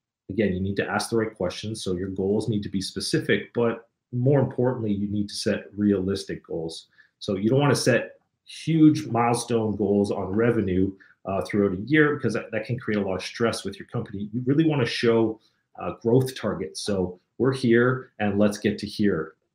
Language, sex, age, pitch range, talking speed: English, male, 40-59, 100-115 Hz, 205 wpm